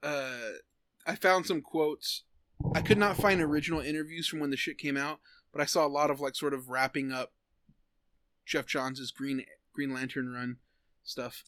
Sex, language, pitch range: male, English, 145-175 Hz